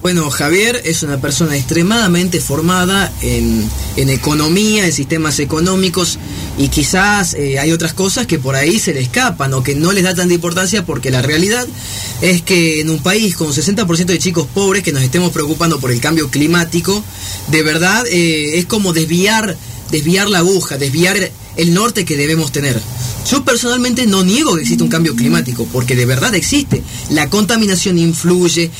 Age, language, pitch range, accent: 30-49, Spanish, 150-195 Hz, Argentinian